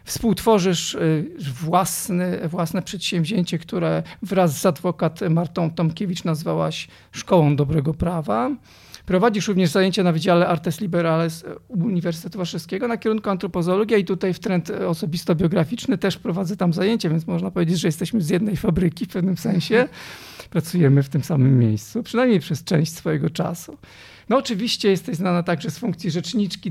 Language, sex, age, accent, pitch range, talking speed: Polish, male, 40-59, native, 165-200 Hz, 145 wpm